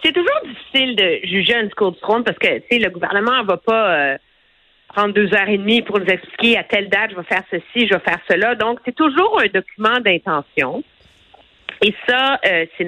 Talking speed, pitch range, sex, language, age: 225 wpm, 200-270 Hz, female, French, 50-69